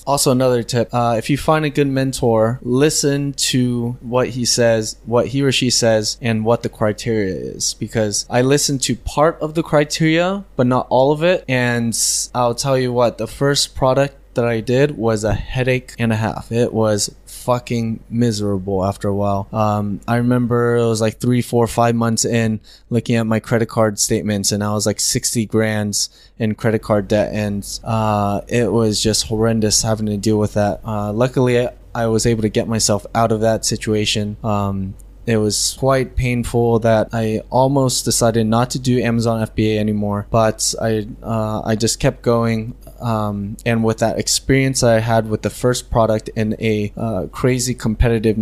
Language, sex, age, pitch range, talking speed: English, male, 20-39, 110-125 Hz, 185 wpm